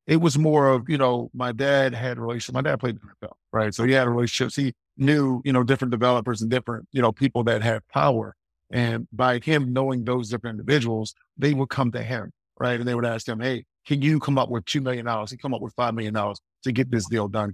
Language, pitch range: English, 115-135 Hz